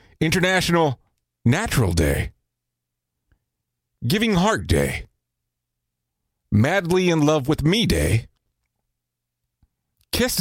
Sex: male